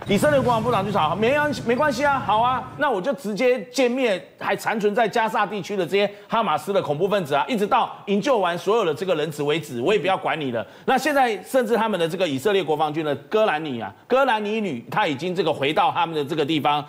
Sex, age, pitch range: male, 30-49, 150-215 Hz